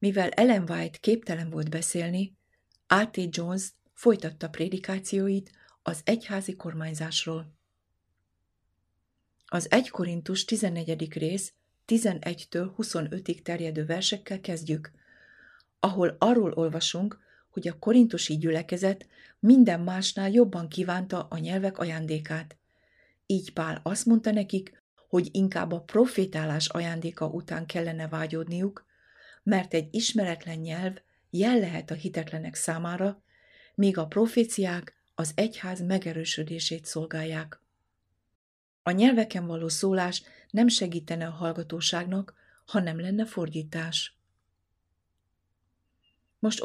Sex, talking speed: female, 100 wpm